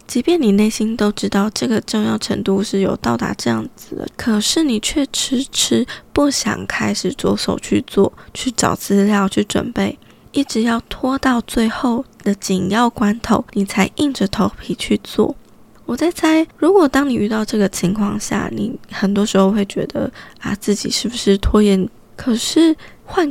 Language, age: Chinese, 20-39